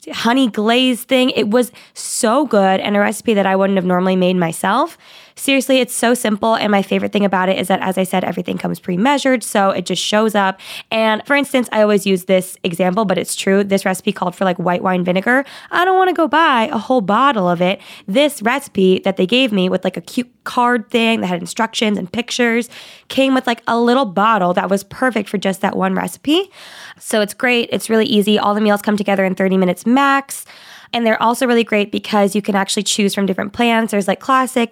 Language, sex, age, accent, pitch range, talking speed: English, female, 20-39, American, 190-240 Hz, 230 wpm